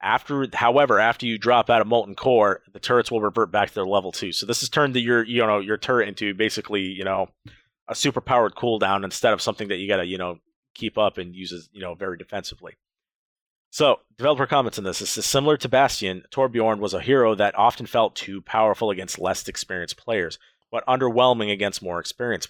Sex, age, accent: male, 30-49, American